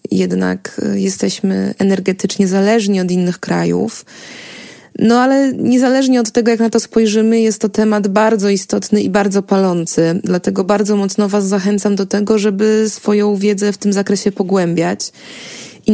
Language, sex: Polish, female